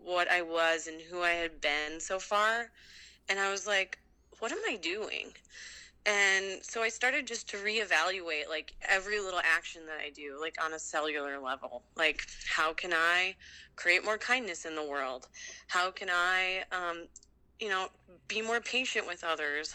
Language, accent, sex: English, American, female